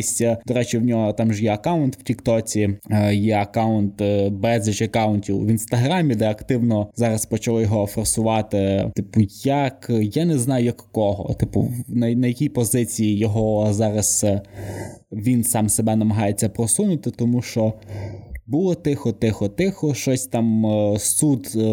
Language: Ukrainian